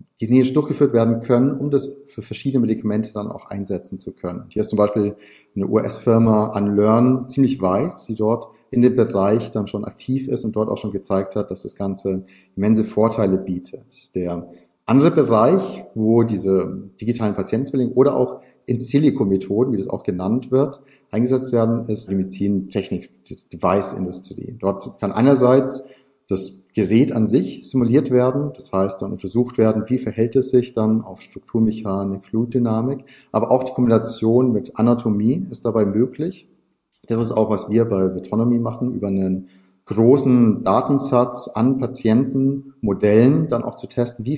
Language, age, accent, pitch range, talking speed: German, 40-59, German, 105-125 Hz, 155 wpm